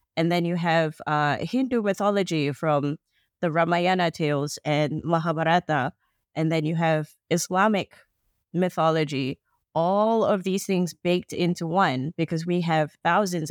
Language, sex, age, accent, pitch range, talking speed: English, female, 30-49, American, 155-195 Hz, 135 wpm